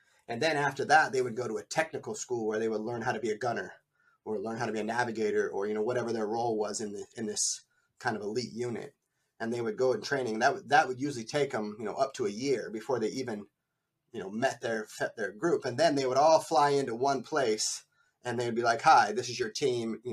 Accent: American